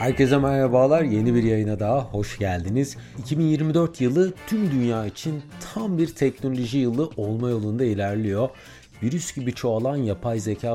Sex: male